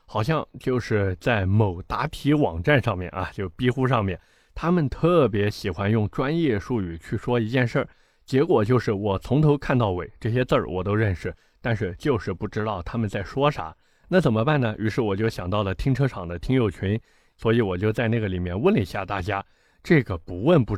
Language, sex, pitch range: Chinese, male, 100-135 Hz